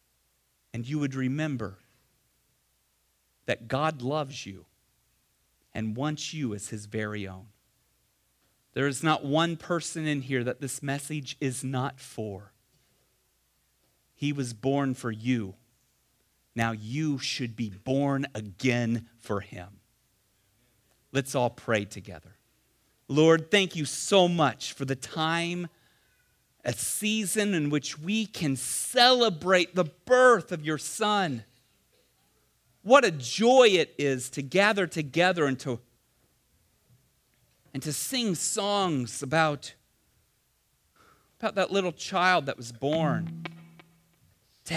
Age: 40-59